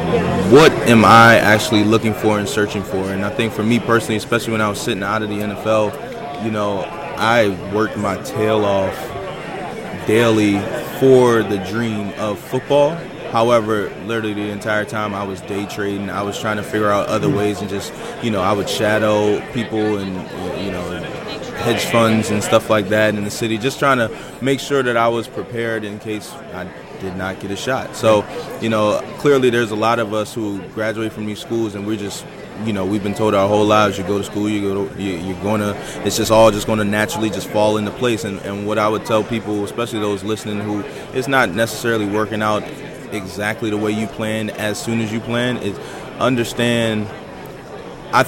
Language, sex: English, male